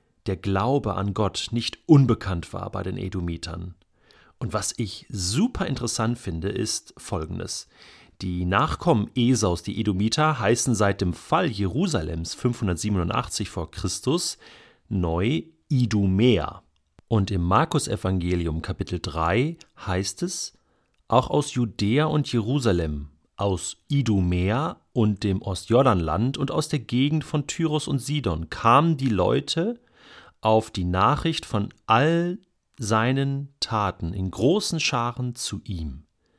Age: 40-59